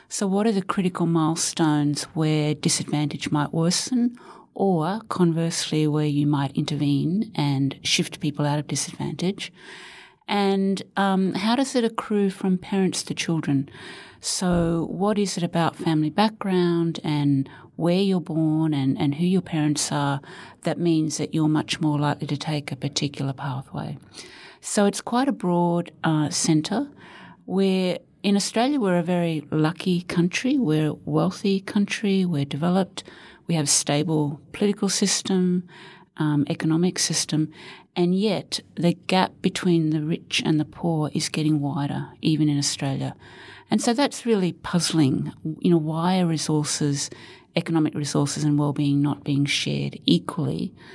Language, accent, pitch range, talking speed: English, Australian, 150-190 Hz, 145 wpm